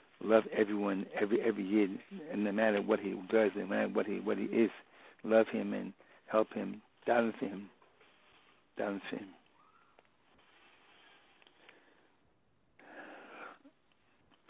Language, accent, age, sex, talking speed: English, American, 60-79, male, 115 wpm